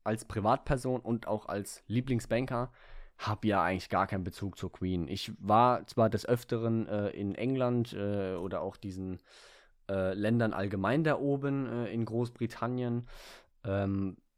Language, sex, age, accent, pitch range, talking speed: German, male, 20-39, German, 110-130 Hz, 145 wpm